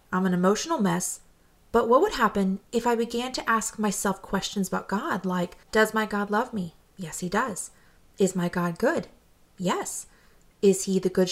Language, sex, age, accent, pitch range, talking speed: English, female, 30-49, American, 185-220 Hz, 185 wpm